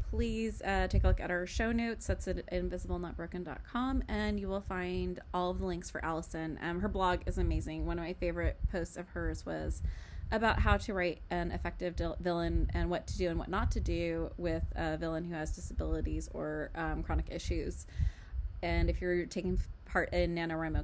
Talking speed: 195 wpm